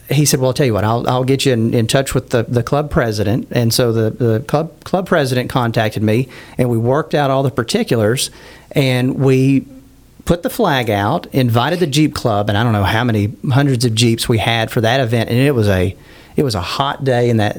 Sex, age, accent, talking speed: male, 40-59, American, 240 wpm